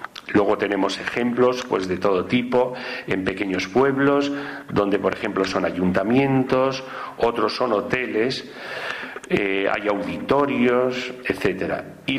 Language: Spanish